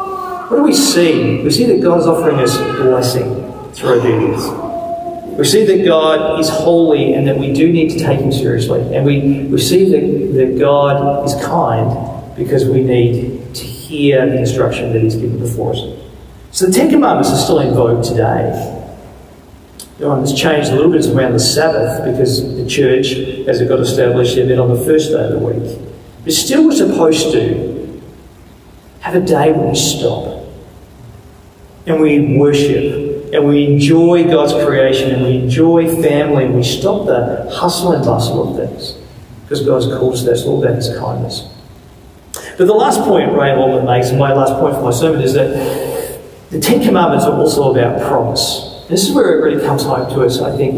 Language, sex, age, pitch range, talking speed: English, male, 40-59, 125-160 Hz, 190 wpm